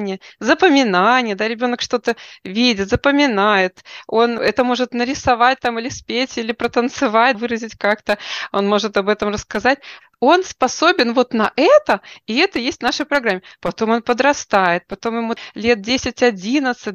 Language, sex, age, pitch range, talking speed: Russian, female, 20-39, 210-260 Hz, 140 wpm